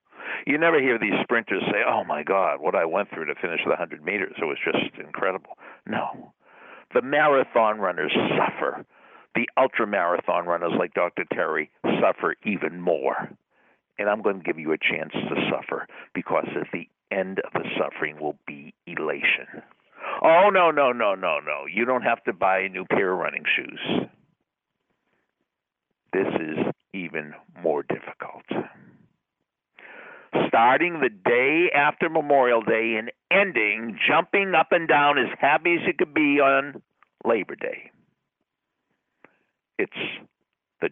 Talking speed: 150 wpm